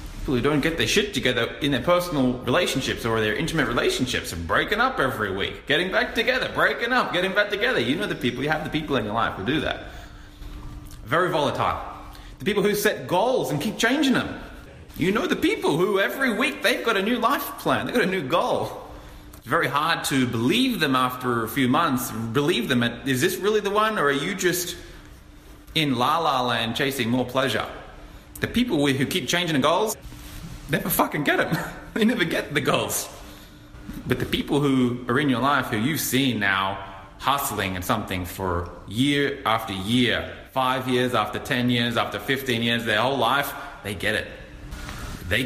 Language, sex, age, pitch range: English, male, 30-49, 95-140 Hz